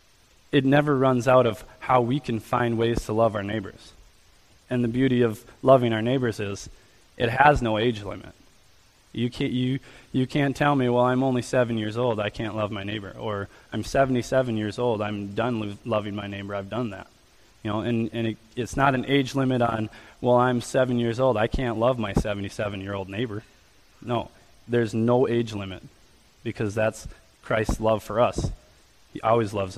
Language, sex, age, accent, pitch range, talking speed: English, male, 20-39, American, 100-125 Hz, 190 wpm